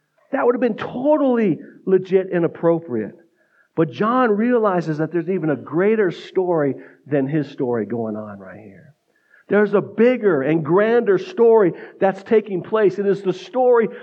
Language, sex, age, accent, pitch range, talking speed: English, male, 50-69, American, 160-205 Hz, 160 wpm